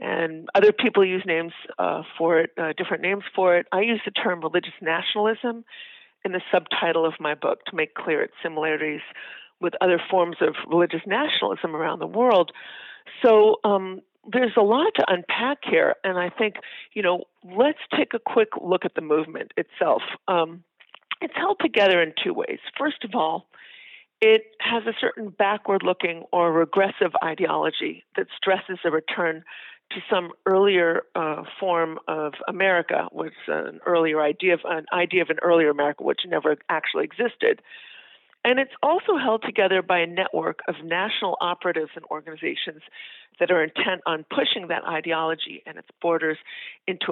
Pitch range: 170-225 Hz